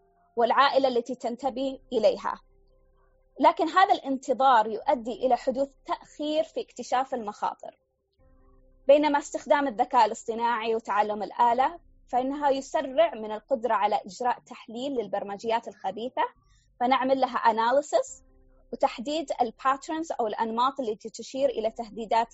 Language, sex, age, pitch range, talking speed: Arabic, female, 20-39, 220-275 Hz, 110 wpm